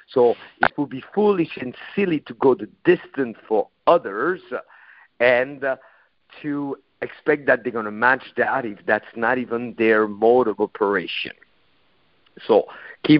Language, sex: English, male